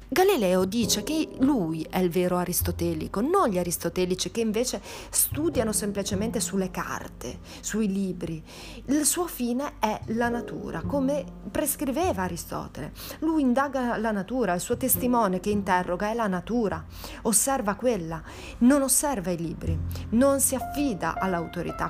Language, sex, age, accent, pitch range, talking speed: Italian, female, 40-59, native, 175-250 Hz, 135 wpm